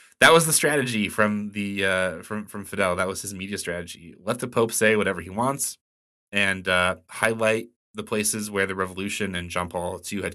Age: 20-39